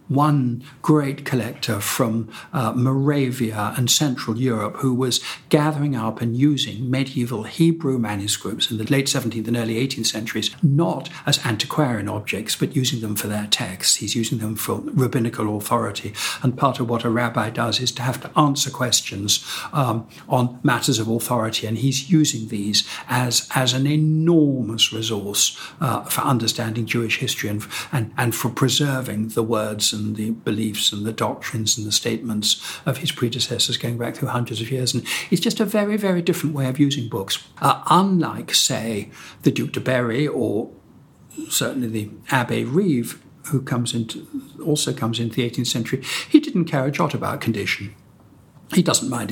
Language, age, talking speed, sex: English, 60-79, 170 wpm, male